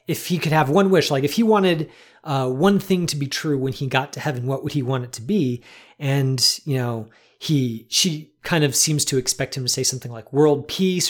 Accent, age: American, 30-49